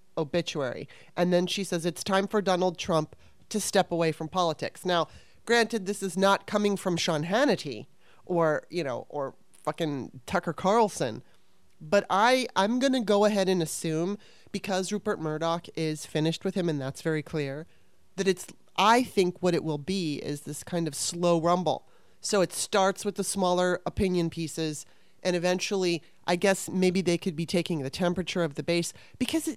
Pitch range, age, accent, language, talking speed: 170-215 Hz, 30-49, American, English, 180 wpm